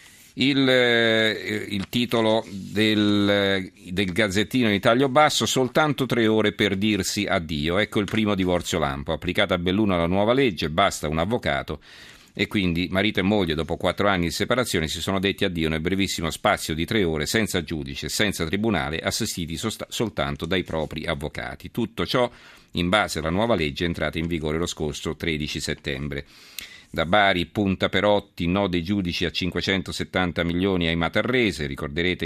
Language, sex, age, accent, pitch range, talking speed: Italian, male, 50-69, native, 80-105 Hz, 160 wpm